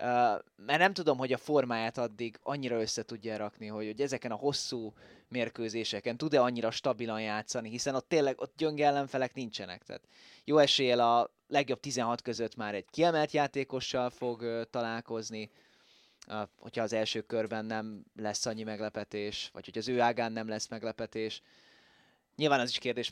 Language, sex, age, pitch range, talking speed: Hungarian, male, 20-39, 115-150 Hz, 165 wpm